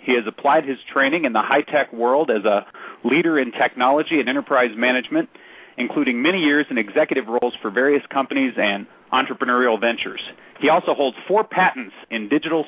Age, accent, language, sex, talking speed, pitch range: 40-59, American, English, male, 170 wpm, 130-175 Hz